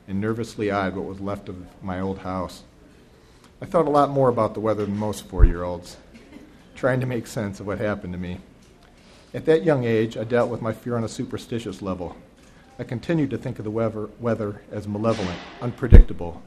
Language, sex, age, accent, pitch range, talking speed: English, male, 40-59, American, 95-120 Hz, 195 wpm